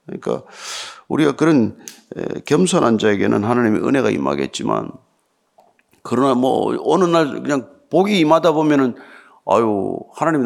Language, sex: Korean, male